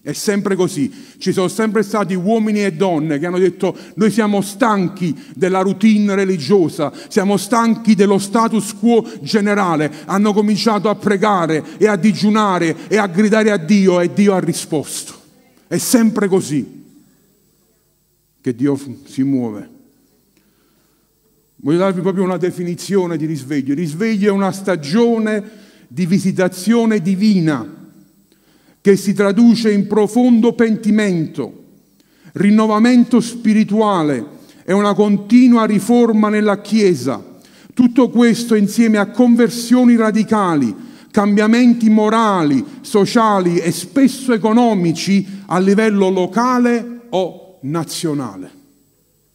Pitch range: 180-220 Hz